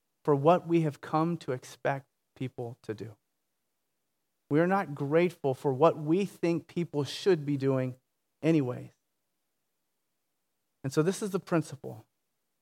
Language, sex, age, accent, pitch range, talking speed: English, male, 40-59, American, 140-170 Hz, 140 wpm